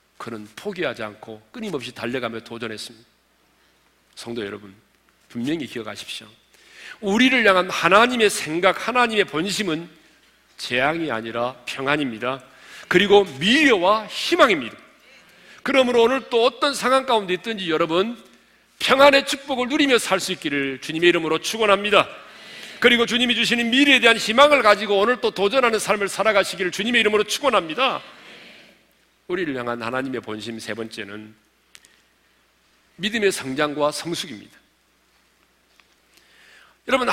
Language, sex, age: Korean, male, 40-59